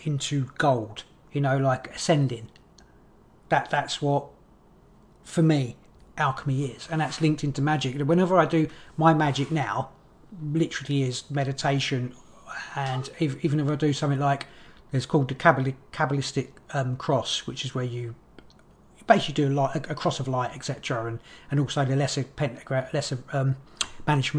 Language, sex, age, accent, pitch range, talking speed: English, male, 40-59, British, 130-155 Hz, 155 wpm